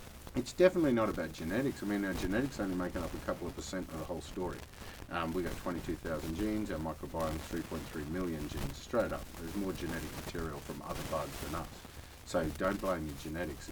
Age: 50-69